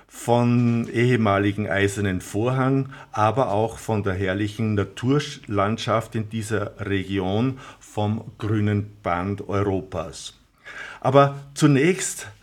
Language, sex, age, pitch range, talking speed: German, male, 50-69, 105-135 Hz, 90 wpm